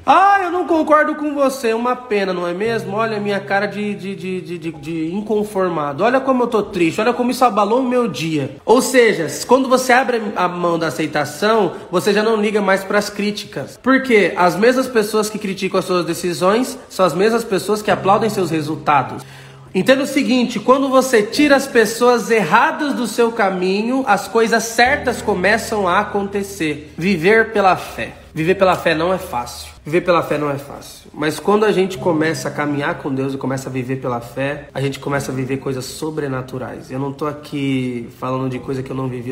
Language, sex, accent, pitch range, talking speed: Portuguese, male, Brazilian, 140-225 Hz, 205 wpm